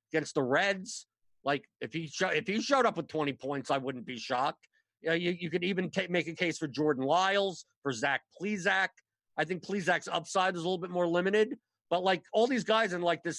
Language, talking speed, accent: English, 235 wpm, American